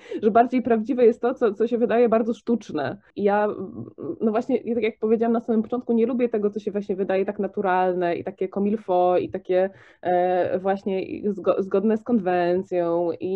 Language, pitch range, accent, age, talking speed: English, 180-230 Hz, Polish, 20-39, 190 wpm